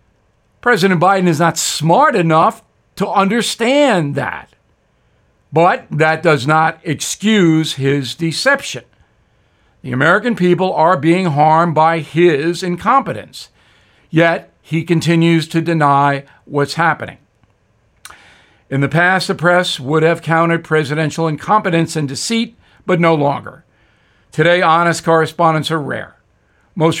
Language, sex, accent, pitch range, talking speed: English, male, American, 150-185 Hz, 120 wpm